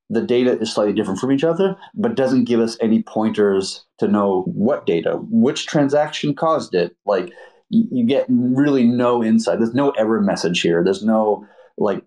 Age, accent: 30-49, American